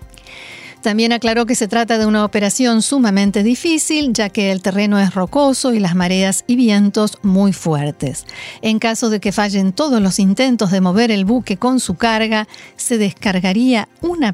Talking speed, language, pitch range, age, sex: 170 wpm, Spanish, 205-250 Hz, 50-69, female